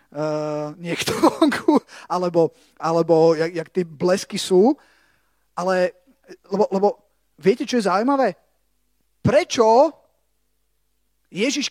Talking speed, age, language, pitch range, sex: 85 wpm, 30-49, Slovak, 170-215 Hz, male